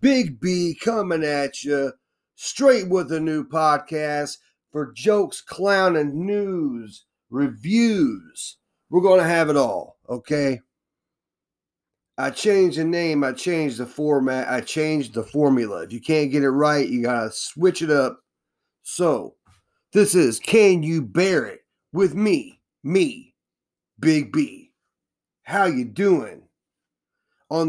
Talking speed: 135 wpm